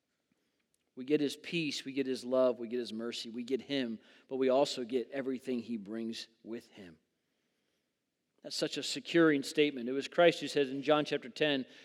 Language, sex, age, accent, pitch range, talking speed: English, male, 40-59, American, 135-165 Hz, 190 wpm